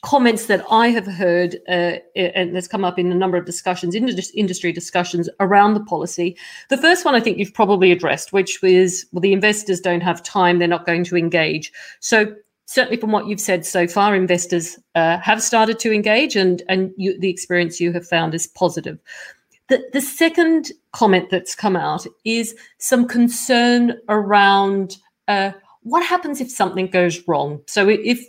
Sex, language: female, English